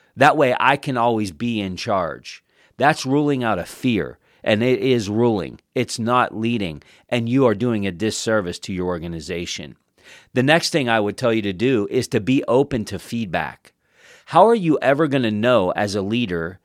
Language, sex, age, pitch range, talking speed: English, male, 40-59, 105-145 Hz, 195 wpm